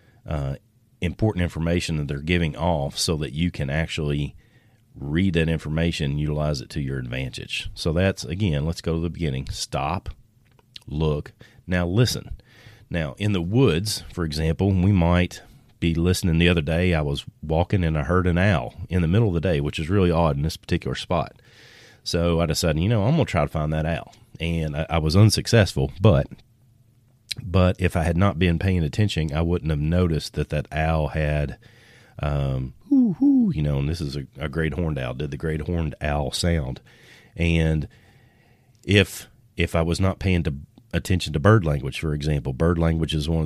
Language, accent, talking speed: English, American, 195 wpm